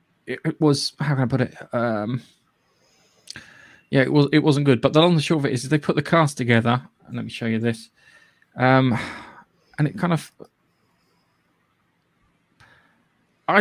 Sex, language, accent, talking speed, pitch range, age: male, English, British, 170 wpm, 125-150 Hz, 20-39